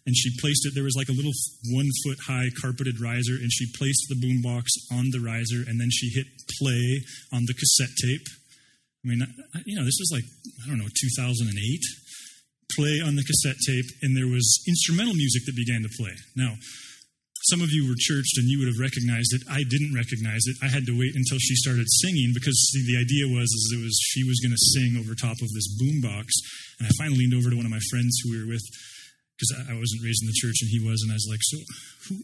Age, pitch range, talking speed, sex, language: 20-39, 120-140 Hz, 235 wpm, male, English